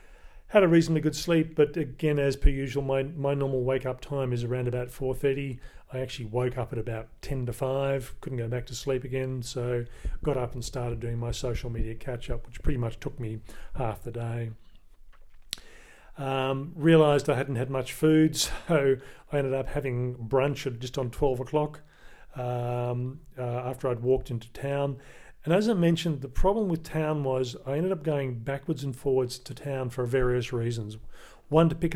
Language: English